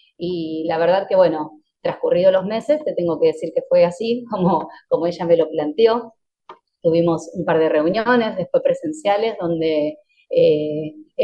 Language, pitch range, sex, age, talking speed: Spanish, 170-270 Hz, female, 20-39, 160 wpm